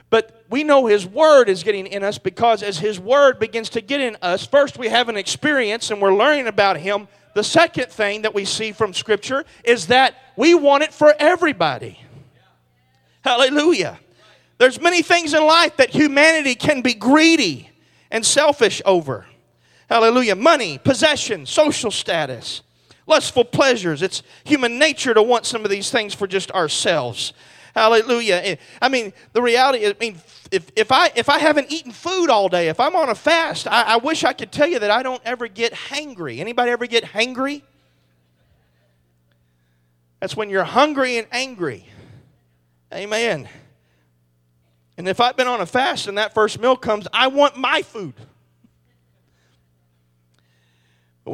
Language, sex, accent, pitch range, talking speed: English, male, American, 175-265 Hz, 160 wpm